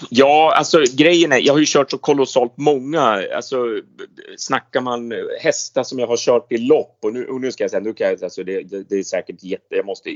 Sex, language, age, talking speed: male, Swedish, 30-49, 230 wpm